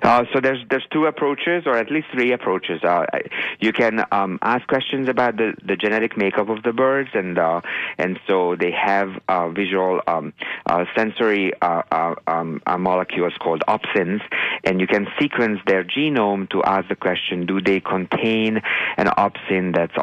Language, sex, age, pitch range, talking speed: English, male, 50-69, 90-115 Hz, 175 wpm